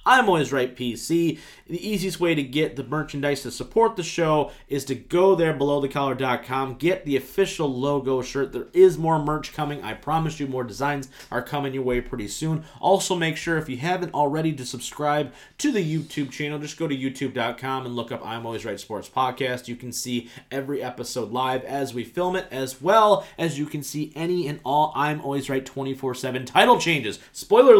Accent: American